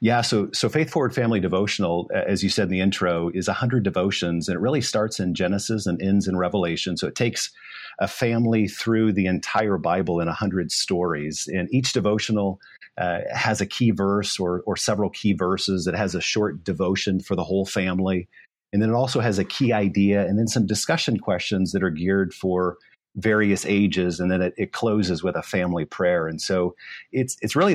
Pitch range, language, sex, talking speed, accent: 90-105 Hz, English, male, 205 wpm, American